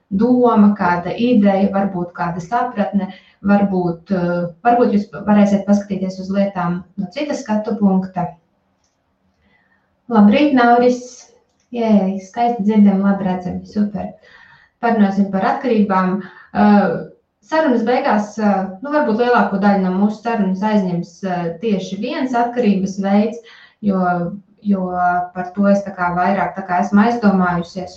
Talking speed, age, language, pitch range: 110 wpm, 20-39, English, 180-215 Hz